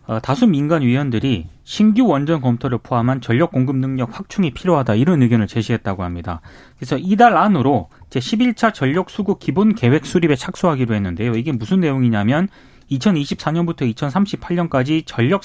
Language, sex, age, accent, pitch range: Korean, male, 30-49, native, 120-200 Hz